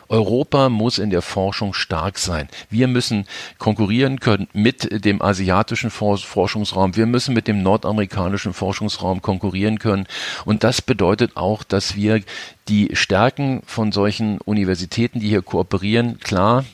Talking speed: 135 wpm